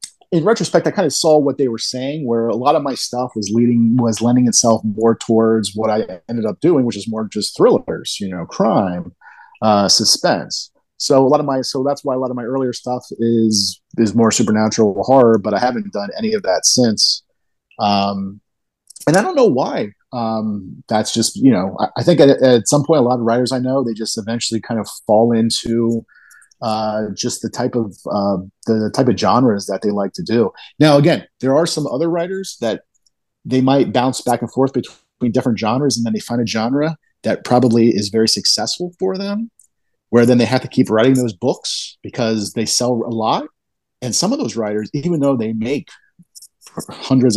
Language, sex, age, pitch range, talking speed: English, male, 30-49, 110-135 Hz, 210 wpm